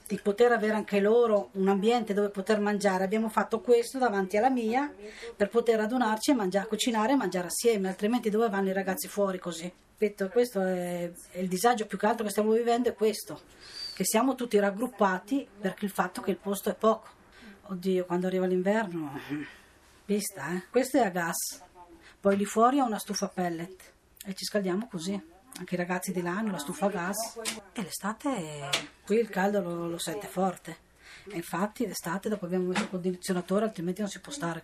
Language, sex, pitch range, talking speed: Italian, female, 185-225 Hz, 190 wpm